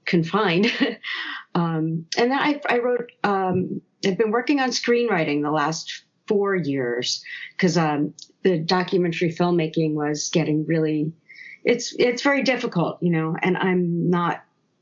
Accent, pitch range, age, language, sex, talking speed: American, 160-185 Hz, 40-59, English, female, 140 wpm